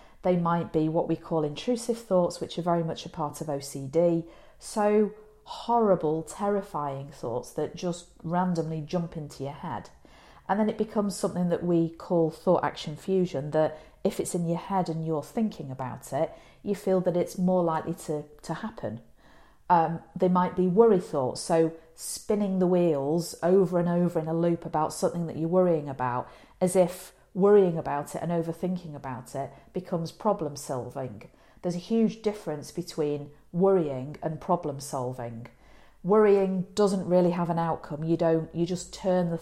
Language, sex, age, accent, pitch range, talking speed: English, female, 40-59, British, 155-185 Hz, 170 wpm